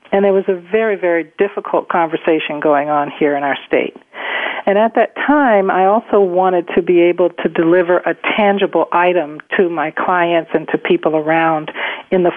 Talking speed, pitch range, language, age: 185 wpm, 165-205 Hz, English, 50-69